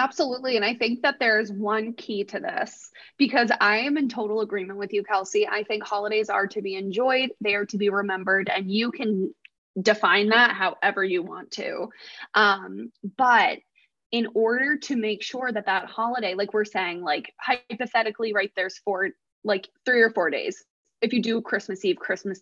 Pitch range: 200-245 Hz